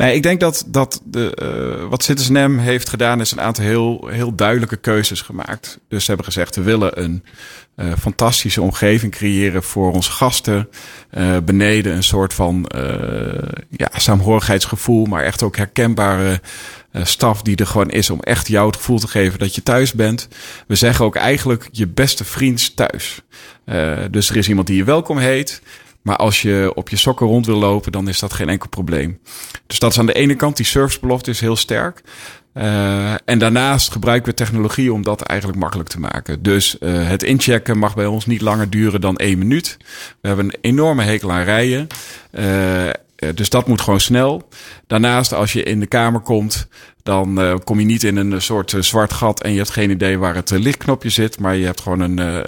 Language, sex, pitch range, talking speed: Dutch, male, 95-120 Hz, 205 wpm